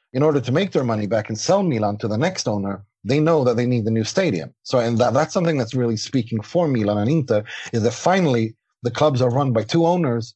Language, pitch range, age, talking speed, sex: Persian, 115-140 Hz, 30-49, 250 wpm, male